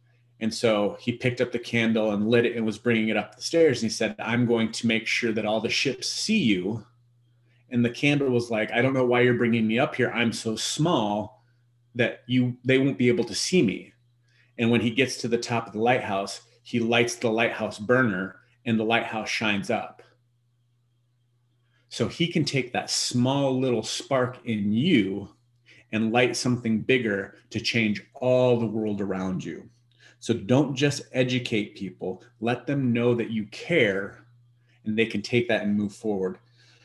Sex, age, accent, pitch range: male, 30-49, American, 110-125 Hz